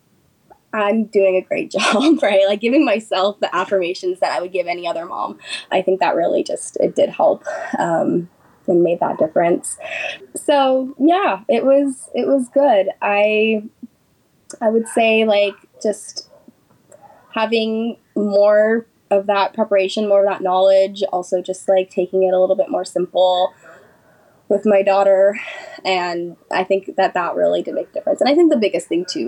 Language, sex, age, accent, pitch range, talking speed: English, female, 10-29, American, 190-260 Hz, 170 wpm